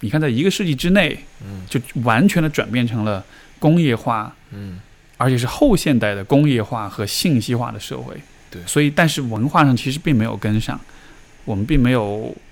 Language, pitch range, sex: Chinese, 110-135 Hz, male